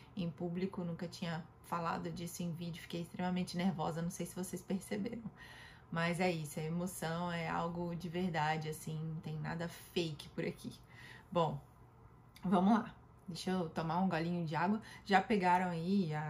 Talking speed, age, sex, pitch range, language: 170 wpm, 20-39, female, 165-205 Hz, Portuguese